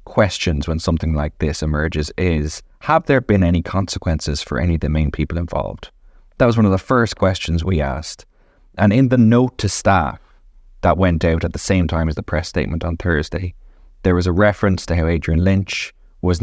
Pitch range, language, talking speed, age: 80-100 Hz, English, 205 wpm, 20-39